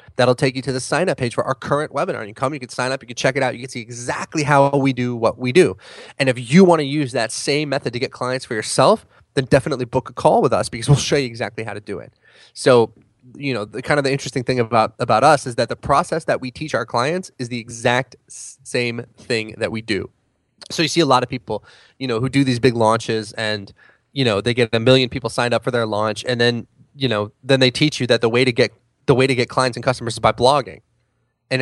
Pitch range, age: 115-140 Hz, 20-39